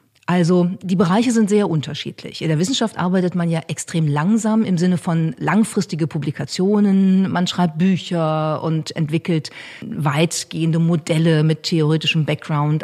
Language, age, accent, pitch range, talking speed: German, 40-59, German, 155-195 Hz, 135 wpm